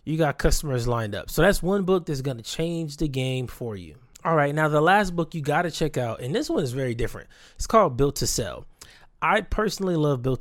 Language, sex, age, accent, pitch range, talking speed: English, male, 20-39, American, 130-165 Hz, 235 wpm